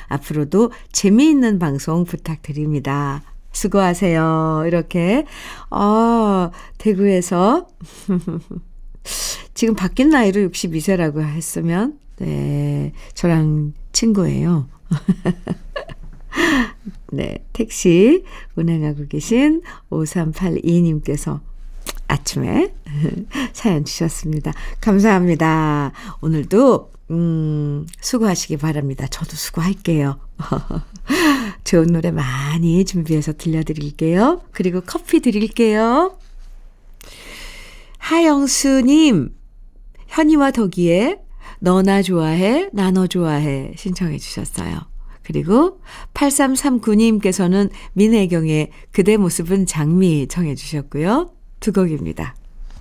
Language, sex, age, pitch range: Korean, female, 50-69, 155-220 Hz